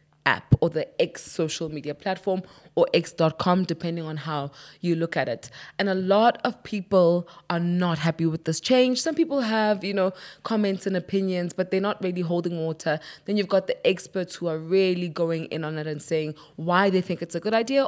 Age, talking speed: 20-39, 210 wpm